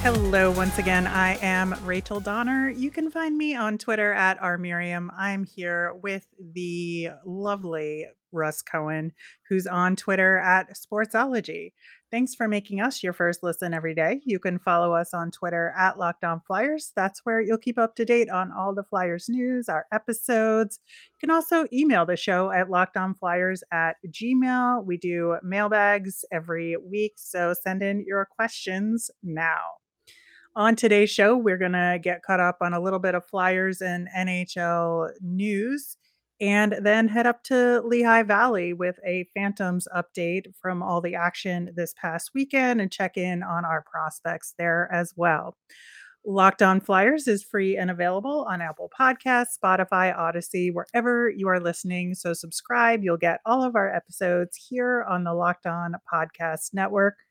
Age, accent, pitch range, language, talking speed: 30-49, American, 175-220 Hz, English, 165 wpm